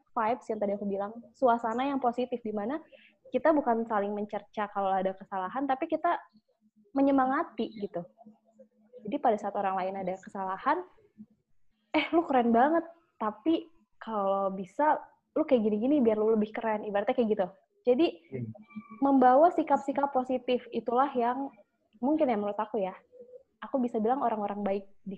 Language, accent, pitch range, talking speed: Indonesian, native, 205-270 Hz, 145 wpm